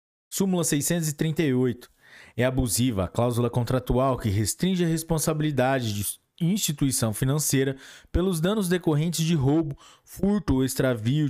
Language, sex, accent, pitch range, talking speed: Portuguese, male, Brazilian, 120-170 Hz, 115 wpm